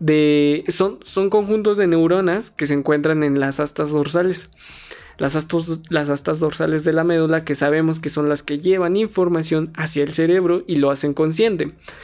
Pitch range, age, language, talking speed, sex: 145-175 Hz, 20-39, Spanish, 170 wpm, male